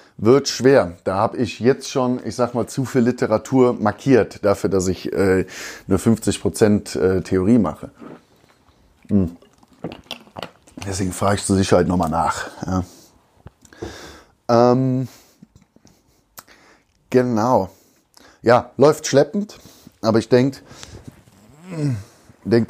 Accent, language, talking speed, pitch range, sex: German, German, 105 wpm, 100-125 Hz, male